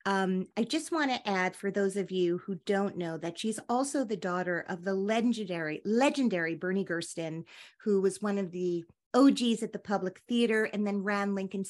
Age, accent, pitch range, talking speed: 40-59, American, 185-230 Hz, 195 wpm